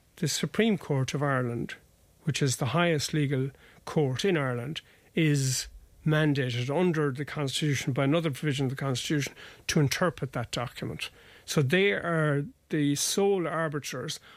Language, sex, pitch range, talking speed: English, male, 135-165 Hz, 140 wpm